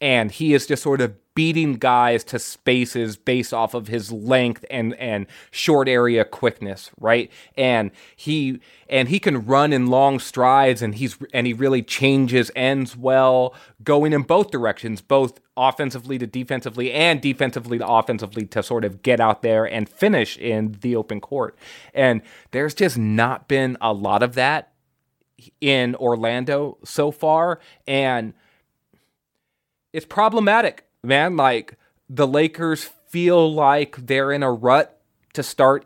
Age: 30-49